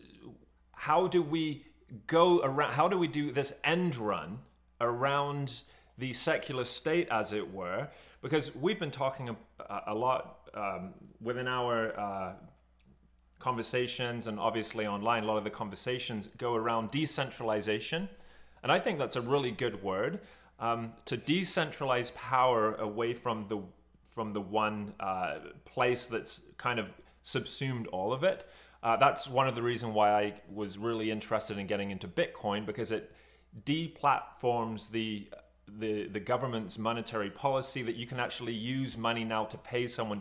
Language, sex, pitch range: English, male, 110-135 Hz